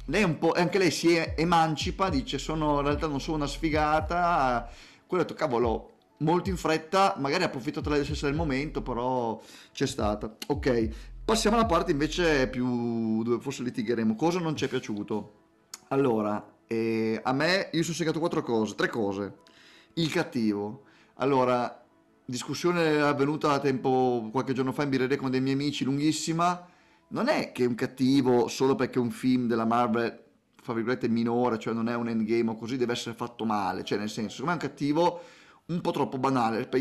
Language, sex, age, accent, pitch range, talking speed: Italian, male, 30-49, native, 120-150 Hz, 180 wpm